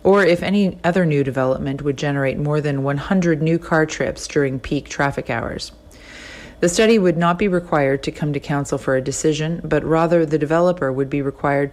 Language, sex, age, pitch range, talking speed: English, female, 40-59, 135-160 Hz, 195 wpm